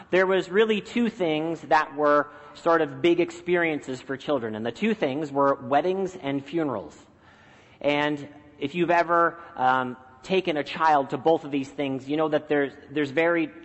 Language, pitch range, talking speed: English, 140-185 Hz, 175 wpm